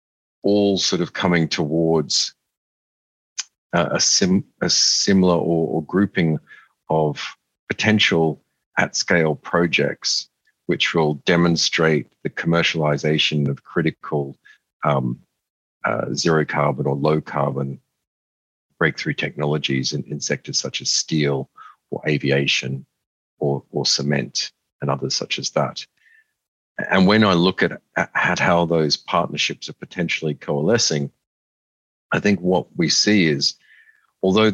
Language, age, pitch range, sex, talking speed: English, 50-69, 70-90 Hz, male, 120 wpm